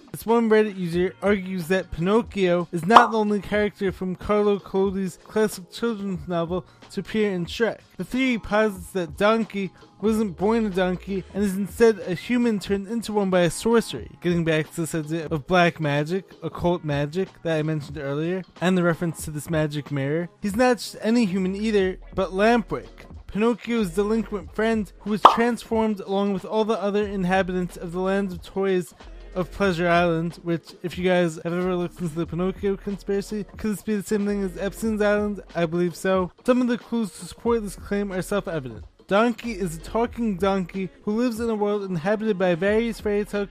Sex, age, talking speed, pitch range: male, 20-39, 190 wpm, 175-210 Hz